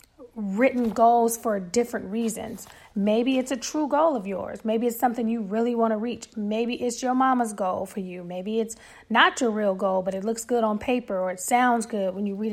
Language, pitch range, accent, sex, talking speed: English, 205-245 Hz, American, female, 220 wpm